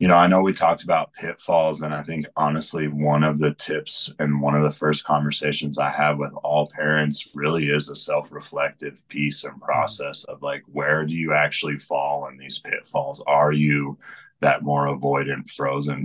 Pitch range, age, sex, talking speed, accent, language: 70-75 Hz, 30-49, male, 185 wpm, American, English